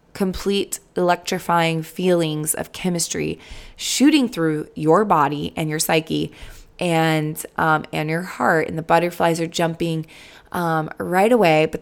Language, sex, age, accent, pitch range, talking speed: English, female, 20-39, American, 160-210 Hz, 130 wpm